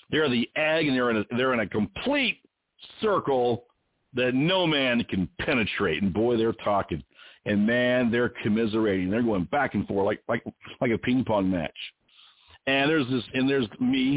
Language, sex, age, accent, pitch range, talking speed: English, male, 50-69, American, 110-135 Hz, 180 wpm